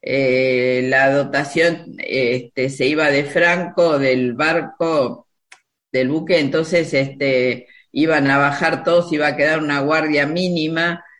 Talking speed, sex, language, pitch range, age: 120 wpm, female, Spanish, 140-170 Hz, 50-69